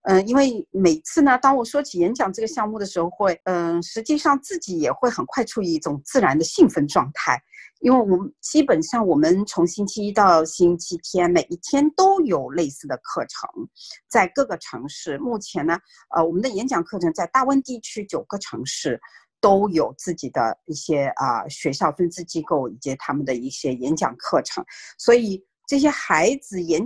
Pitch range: 170-280 Hz